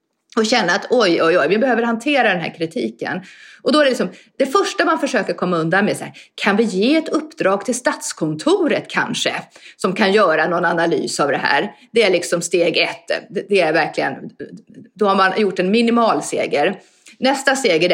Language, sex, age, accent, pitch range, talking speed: Swedish, female, 30-49, native, 175-265 Hz, 205 wpm